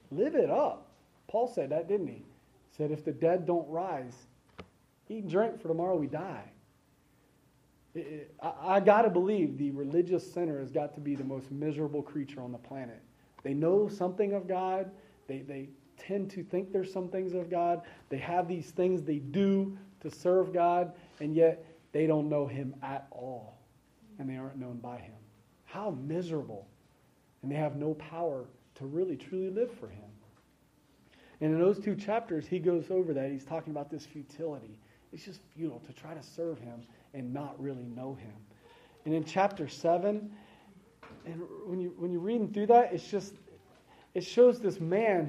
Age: 40-59